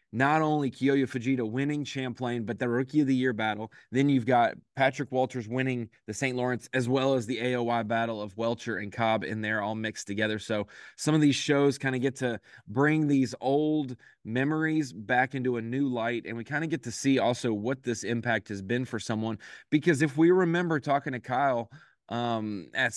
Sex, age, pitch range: male, 20-39, 115-135 Hz